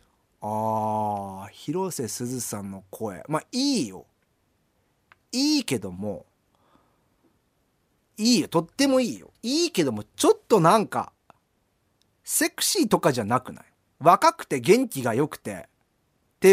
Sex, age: male, 40-59